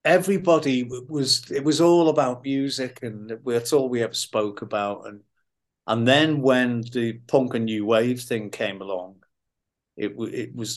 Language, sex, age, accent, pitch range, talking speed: English, male, 50-69, British, 115-140 Hz, 160 wpm